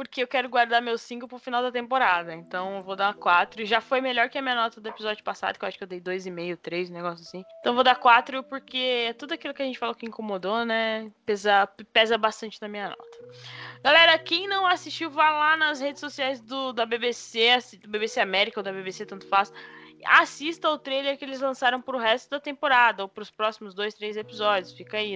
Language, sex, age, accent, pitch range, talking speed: Portuguese, female, 10-29, Brazilian, 205-255 Hz, 235 wpm